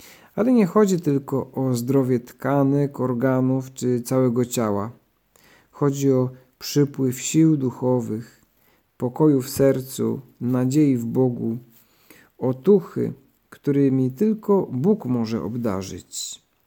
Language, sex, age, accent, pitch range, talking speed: Polish, male, 50-69, native, 125-150 Hz, 105 wpm